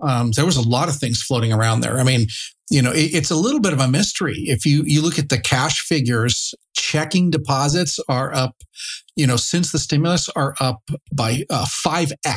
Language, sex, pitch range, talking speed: English, male, 125-155 Hz, 210 wpm